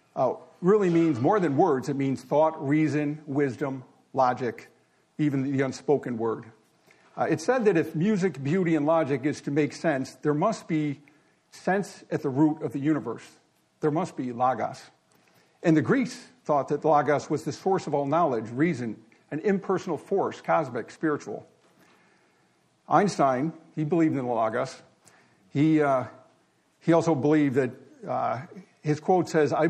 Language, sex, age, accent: English, male, 50-69, American